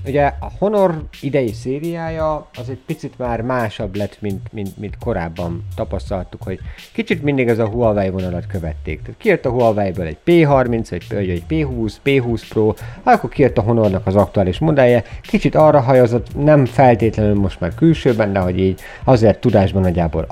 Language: Hungarian